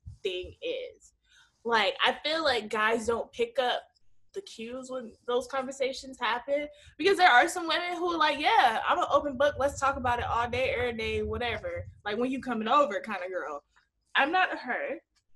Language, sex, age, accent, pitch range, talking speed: English, female, 20-39, American, 225-320 Hz, 190 wpm